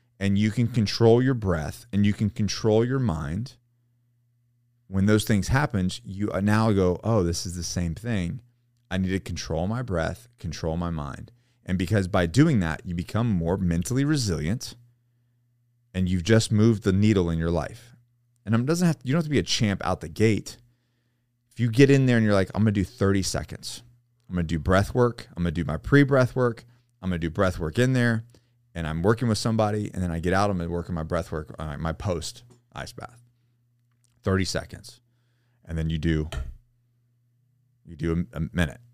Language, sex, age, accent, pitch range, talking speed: English, male, 30-49, American, 95-120 Hz, 205 wpm